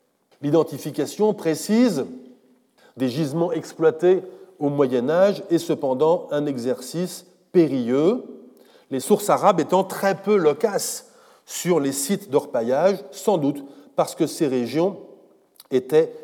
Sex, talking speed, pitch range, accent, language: male, 110 wpm, 145-205 Hz, French, French